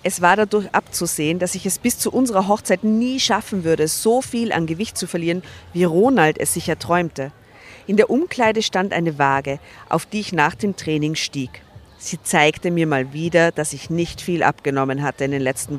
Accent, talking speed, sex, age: German, 200 wpm, female, 50-69